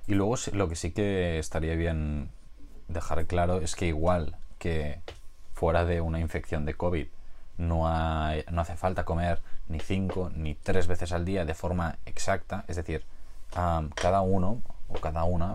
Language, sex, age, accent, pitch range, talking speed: Spanish, male, 20-39, Spanish, 80-95 Hz, 170 wpm